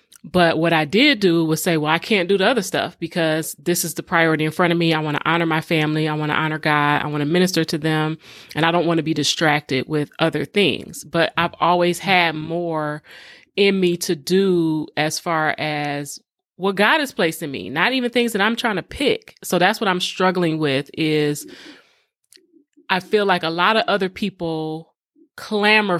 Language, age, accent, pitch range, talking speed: English, 30-49, American, 155-200 Hz, 210 wpm